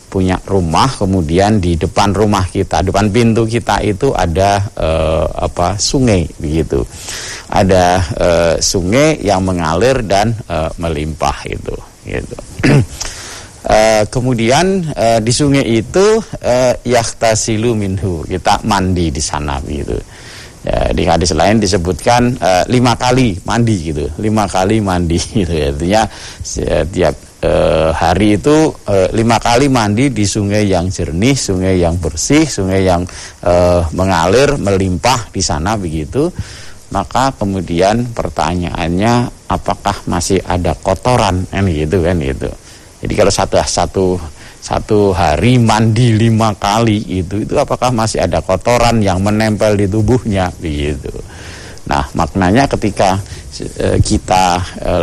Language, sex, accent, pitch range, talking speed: Indonesian, male, native, 90-115 Hz, 130 wpm